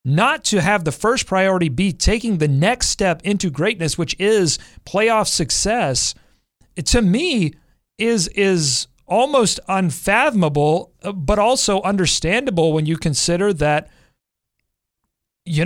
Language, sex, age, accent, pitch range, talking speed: English, male, 40-59, American, 145-200 Hz, 120 wpm